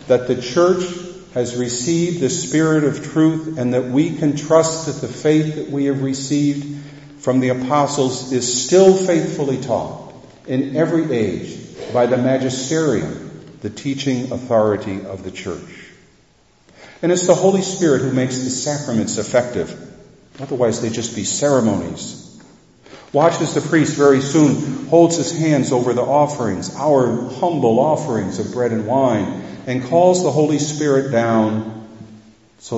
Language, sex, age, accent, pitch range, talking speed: English, male, 50-69, American, 115-145 Hz, 145 wpm